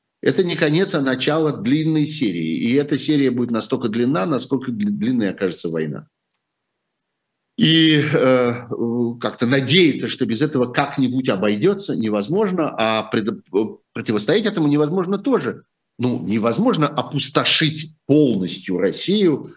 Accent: native